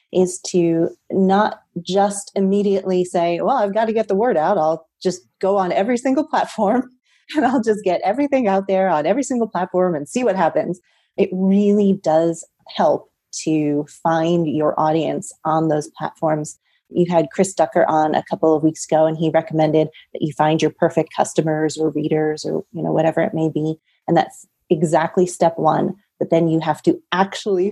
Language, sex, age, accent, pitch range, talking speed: English, female, 30-49, American, 160-205 Hz, 185 wpm